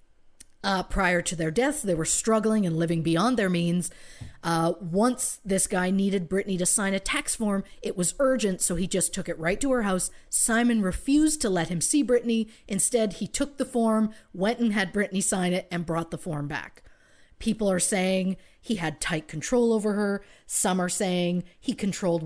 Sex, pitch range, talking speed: female, 175-225 Hz, 195 wpm